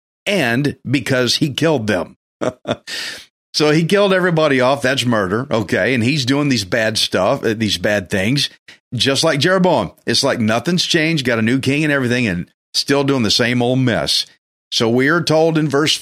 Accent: American